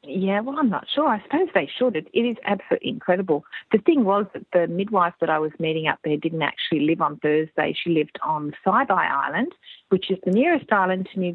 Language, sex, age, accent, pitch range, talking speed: English, female, 40-59, Australian, 165-230 Hz, 220 wpm